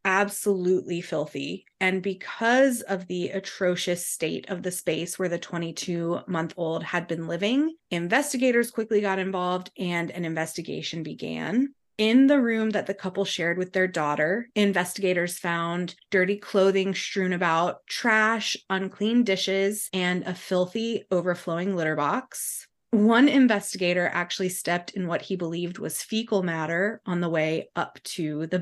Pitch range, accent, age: 170-205 Hz, American, 20-39